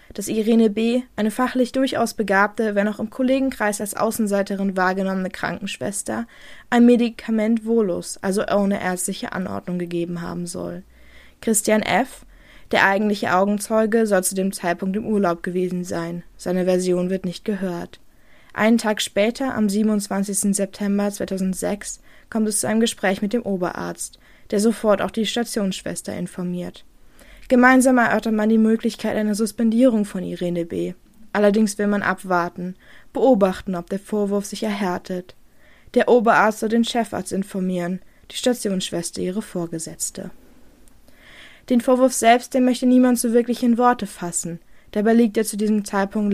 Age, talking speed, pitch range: 20-39, 145 wpm, 185-230 Hz